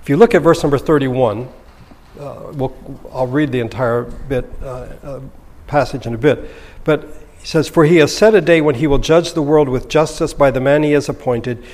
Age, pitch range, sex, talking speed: 60-79, 115-155 Hz, male, 220 wpm